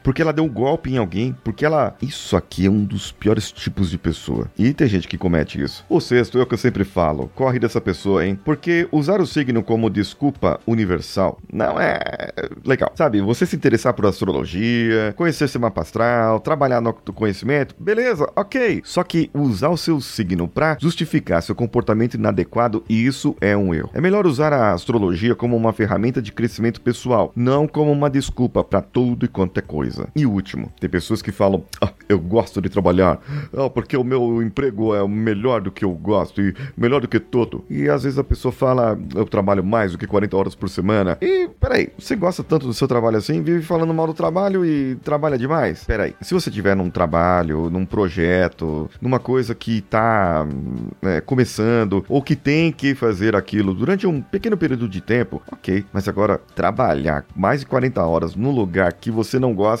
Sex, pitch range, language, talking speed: male, 95-135 Hz, Portuguese, 195 wpm